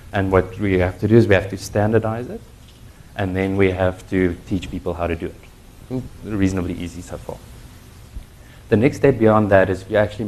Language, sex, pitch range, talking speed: English, male, 90-105 Hz, 205 wpm